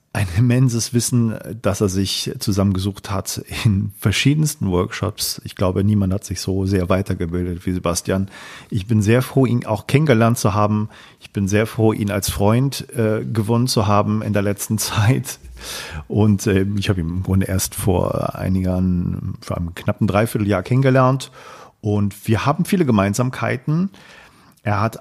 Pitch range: 95-120 Hz